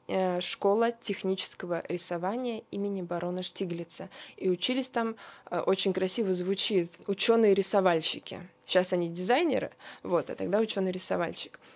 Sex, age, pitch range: female, 20-39, 180-230 Hz